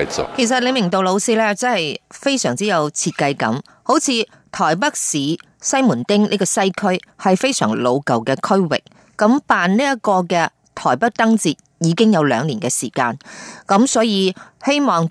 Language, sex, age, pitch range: Chinese, female, 20-39, 170-240 Hz